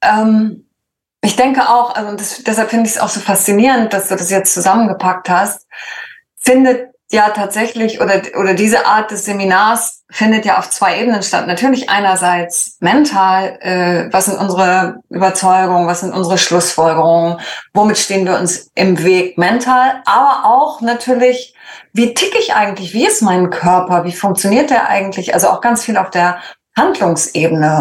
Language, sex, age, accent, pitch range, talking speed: German, female, 20-39, German, 180-235 Hz, 160 wpm